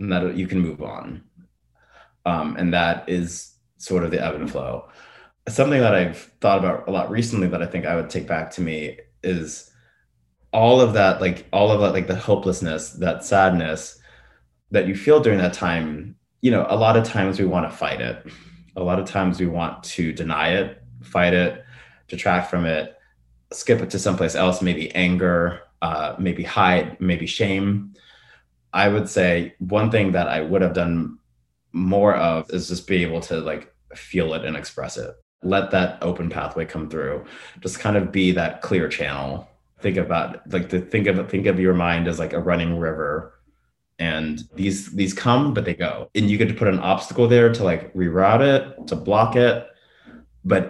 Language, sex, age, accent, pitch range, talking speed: English, male, 30-49, American, 85-100 Hz, 195 wpm